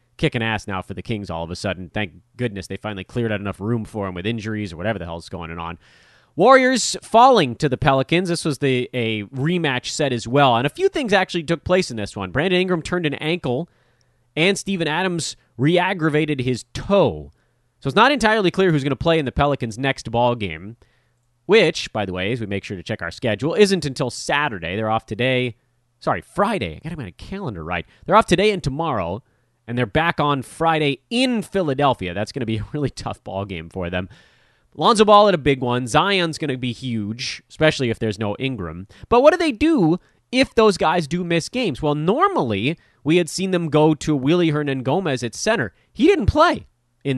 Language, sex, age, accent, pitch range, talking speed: English, male, 30-49, American, 110-165 Hz, 215 wpm